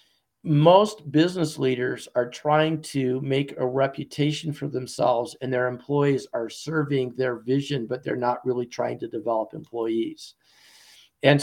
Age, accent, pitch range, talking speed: 50-69, American, 125-155 Hz, 140 wpm